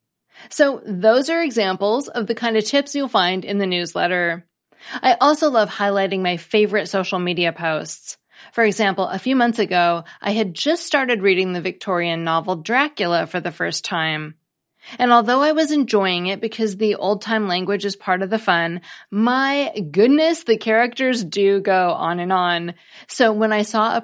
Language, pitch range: English, 175-230 Hz